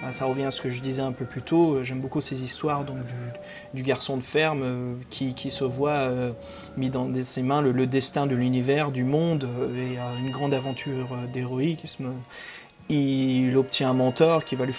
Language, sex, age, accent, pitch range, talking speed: French, male, 30-49, French, 125-145 Hz, 205 wpm